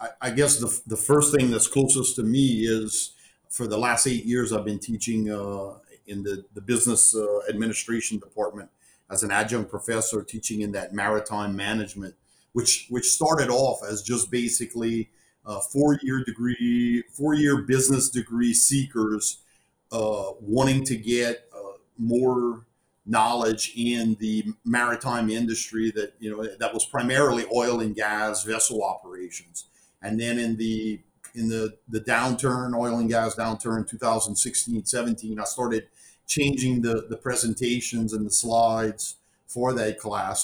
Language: English